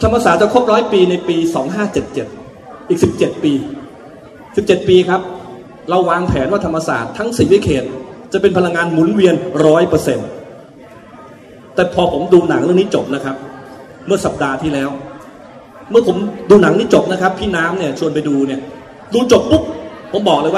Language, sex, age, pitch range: Thai, male, 30-49, 155-215 Hz